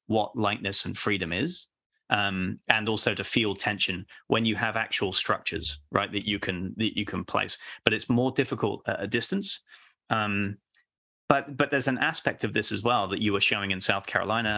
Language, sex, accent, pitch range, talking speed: English, male, British, 100-120 Hz, 200 wpm